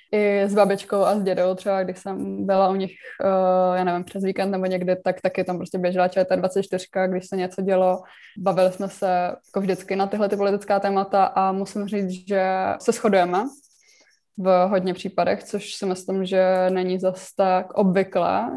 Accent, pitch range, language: native, 190-210 Hz, Czech